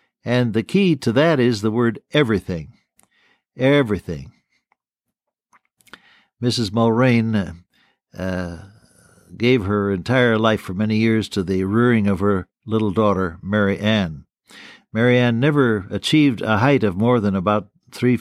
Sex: male